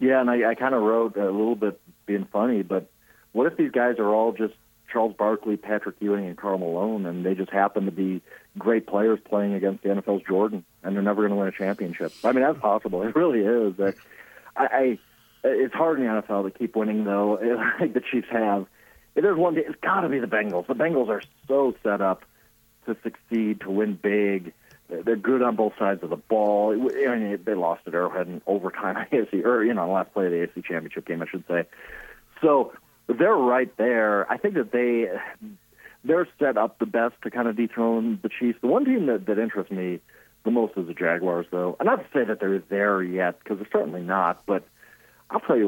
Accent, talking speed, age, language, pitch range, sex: American, 220 wpm, 40-59, English, 95-115 Hz, male